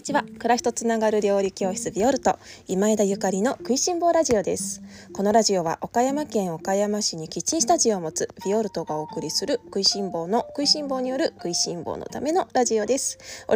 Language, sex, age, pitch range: Japanese, female, 20-39, 195-265 Hz